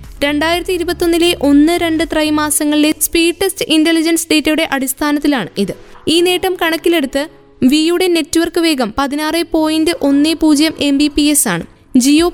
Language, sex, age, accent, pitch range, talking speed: Malayalam, female, 20-39, native, 285-335 Hz, 95 wpm